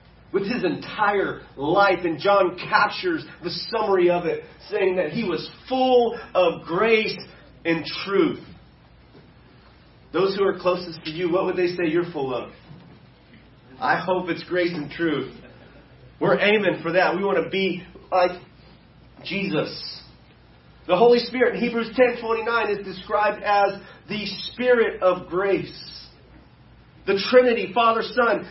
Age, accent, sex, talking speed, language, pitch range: 30-49, American, male, 140 wpm, English, 180-230 Hz